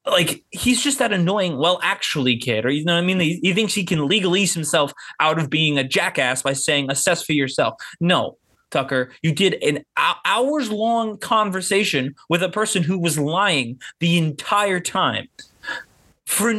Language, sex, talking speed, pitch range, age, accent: English, male, 175 wpm, 155-235 Hz, 20-39, American